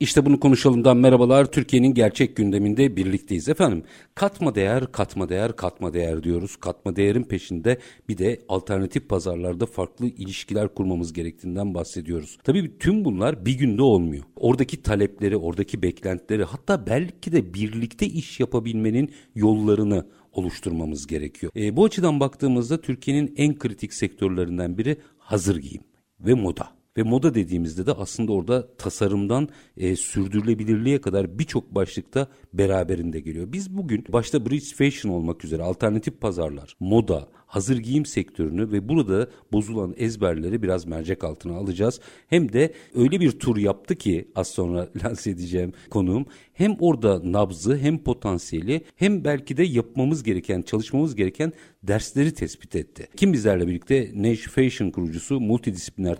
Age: 50-69